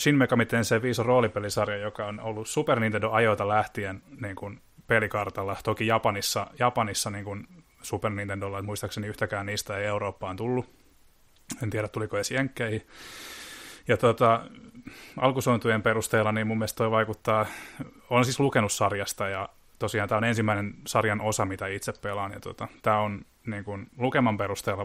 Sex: male